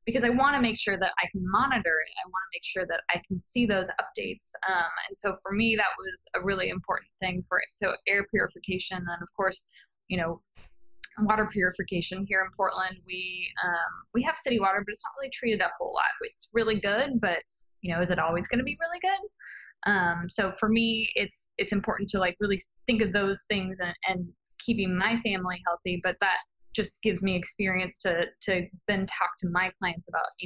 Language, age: English, 10-29